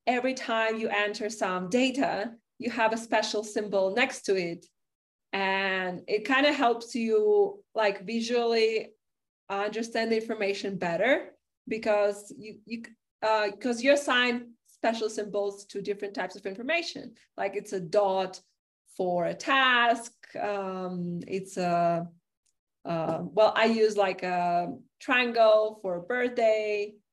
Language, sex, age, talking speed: English, female, 30-49, 135 wpm